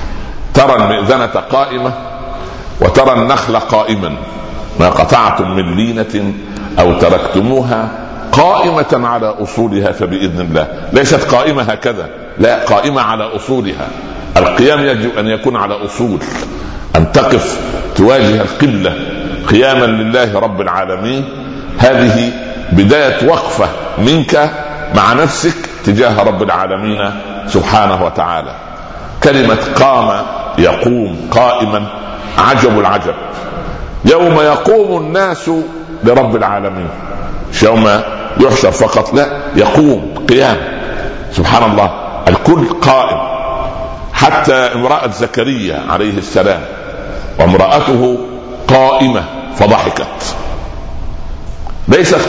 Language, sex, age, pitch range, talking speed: Arabic, male, 60-79, 100-130 Hz, 90 wpm